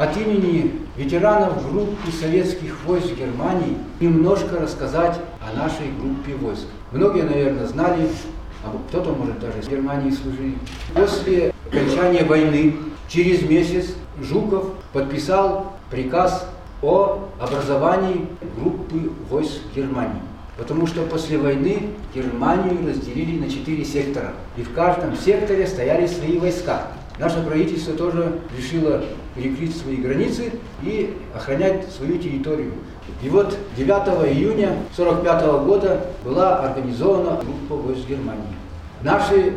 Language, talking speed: Russian, 115 wpm